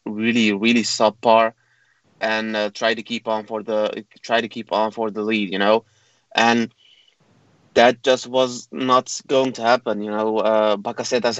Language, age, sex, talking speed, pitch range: English, 20-39, male, 170 wpm, 105-120 Hz